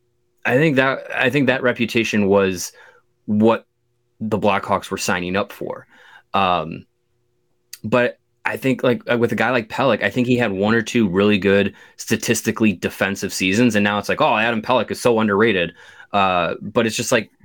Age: 20-39